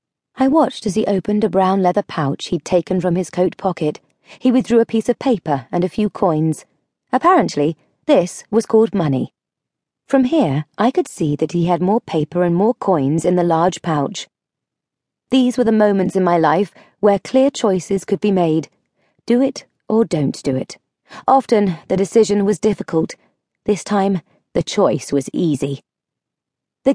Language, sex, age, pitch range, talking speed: English, female, 30-49, 160-230 Hz, 175 wpm